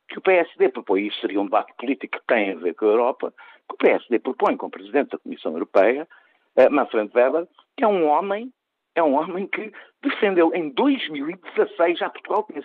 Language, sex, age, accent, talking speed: Portuguese, male, 50-69, Portuguese, 210 wpm